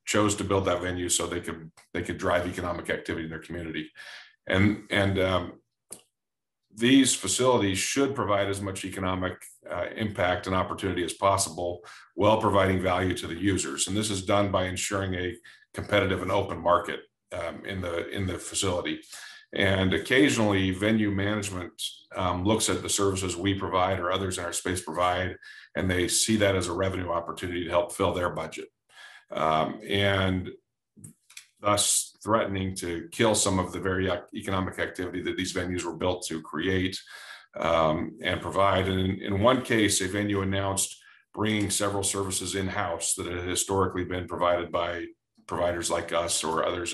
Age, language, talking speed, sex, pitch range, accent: 50-69, English, 160 wpm, male, 90-100 Hz, American